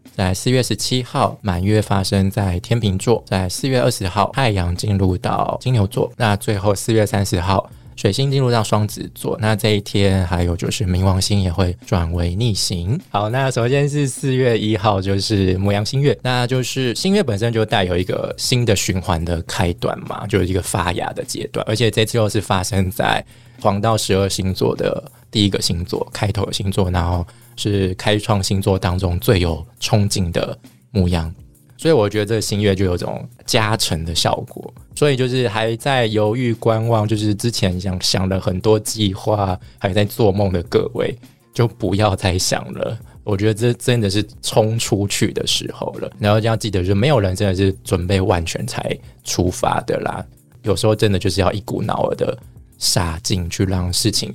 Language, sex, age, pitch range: Chinese, male, 20-39, 95-115 Hz